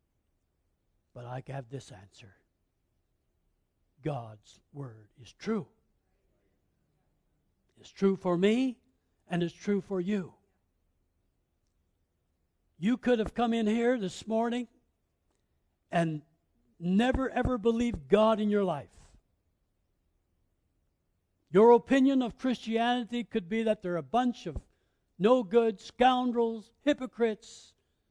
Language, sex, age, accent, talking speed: English, male, 60-79, American, 105 wpm